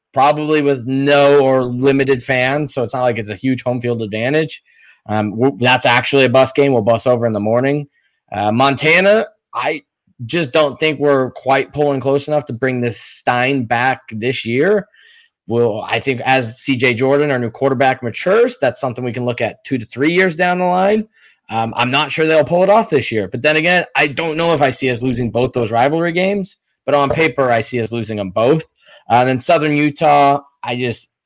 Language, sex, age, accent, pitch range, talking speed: English, male, 20-39, American, 120-150 Hz, 215 wpm